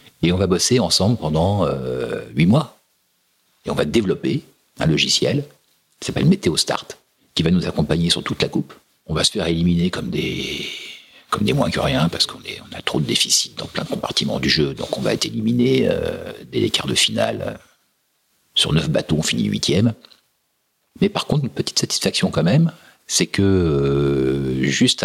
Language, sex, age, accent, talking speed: French, male, 60-79, French, 185 wpm